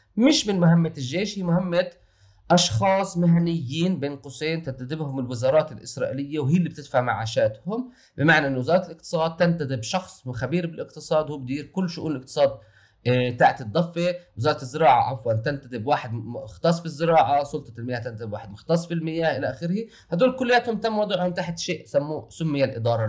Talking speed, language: 145 wpm, Arabic